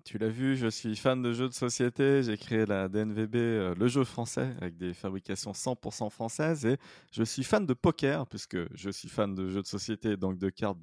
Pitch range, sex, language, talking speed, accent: 100-130 Hz, male, French, 220 wpm, French